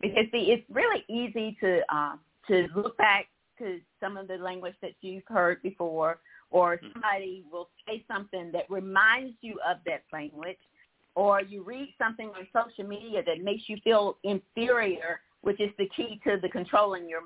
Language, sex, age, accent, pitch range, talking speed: English, female, 50-69, American, 190-240 Hz, 175 wpm